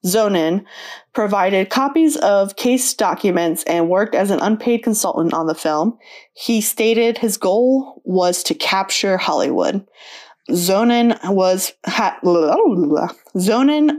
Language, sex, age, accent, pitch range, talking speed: English, female, 20-39, American, 160-215 Hz, 105 wpm